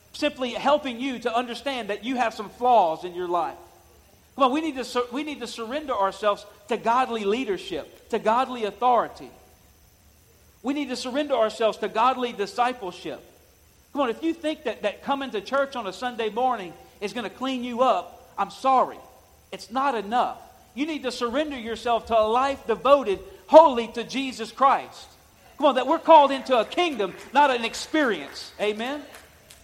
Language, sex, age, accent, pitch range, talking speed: English, male, 50-69, American, 190-270 Hz, 170 wpm